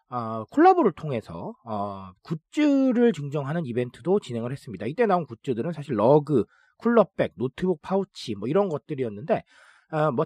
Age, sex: 40-59, male